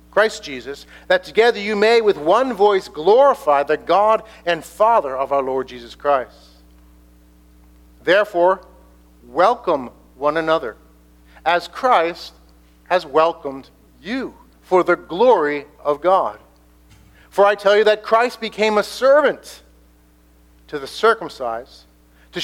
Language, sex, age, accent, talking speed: English, male, 50-69, American, 125 wpm